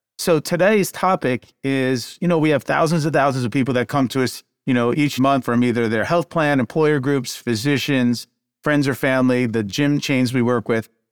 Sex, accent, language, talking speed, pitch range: male, American, English, 205 wpm, 120-155 Hz